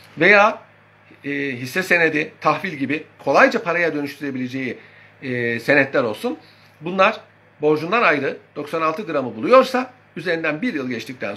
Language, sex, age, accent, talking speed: Turkish, male, 60-79, native, 115 wpm